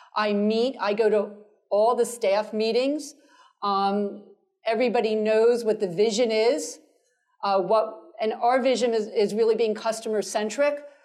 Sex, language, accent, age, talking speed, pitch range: female, English, American, 50-69, 140 wpm, 205-250 Hz